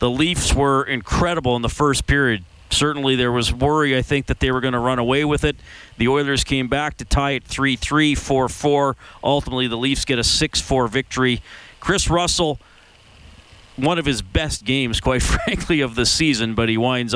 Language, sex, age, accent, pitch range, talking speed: English, male, 40-59, American, 110-145 Hz, 190 wpm